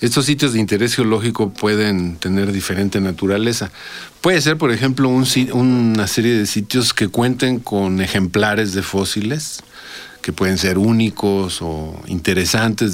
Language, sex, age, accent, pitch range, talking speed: Spanish, male, 50-69, Mexican, 95-115 Hz, 135 wpm